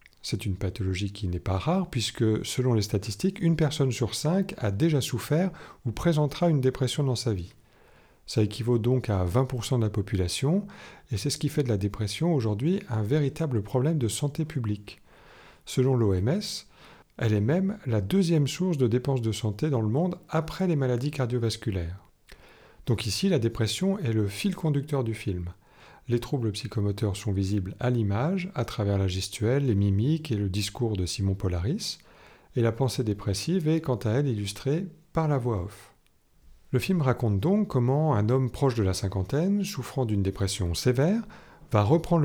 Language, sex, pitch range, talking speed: French, male, 105-145 Hz, 180 wpm